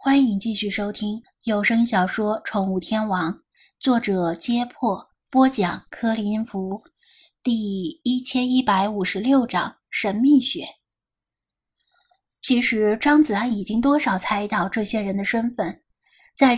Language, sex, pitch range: Chinese, female, 205-255 Hz